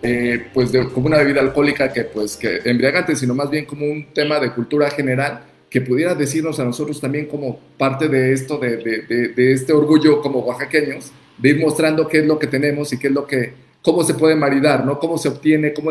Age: 40-59